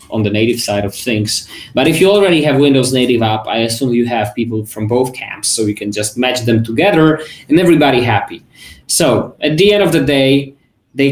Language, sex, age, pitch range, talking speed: English, male, 20-39, 115-150 Hz, 215 wpm